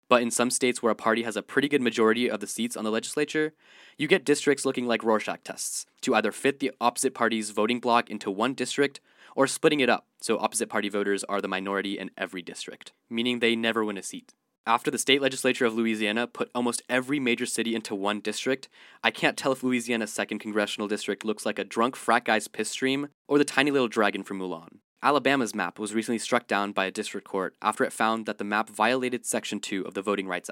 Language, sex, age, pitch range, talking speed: English, male, 20-39, 105-125 Hz, 230 wpm